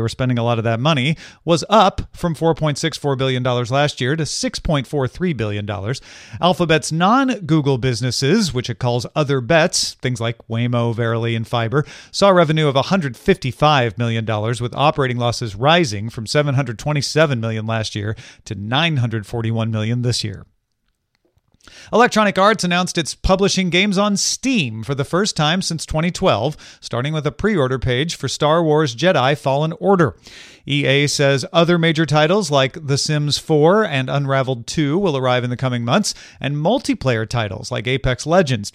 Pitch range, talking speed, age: 125-165 Hz, 155 wpm, 40-59